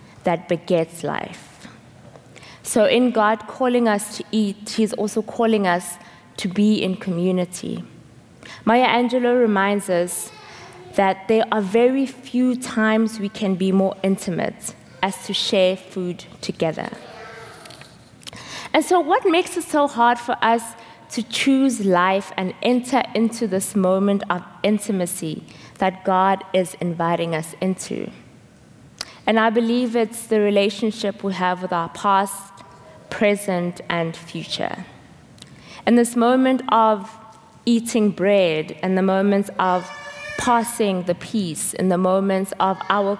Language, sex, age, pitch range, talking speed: English, female, 20-39, 185-225 Hz, 130 wpm